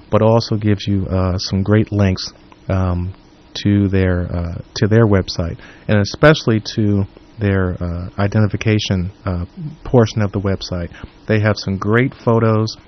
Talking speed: 145 wpm